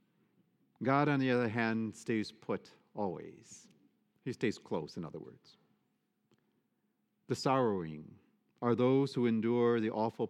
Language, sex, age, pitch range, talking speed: English, male, 50-69, 115-180 Hz, 130 wpm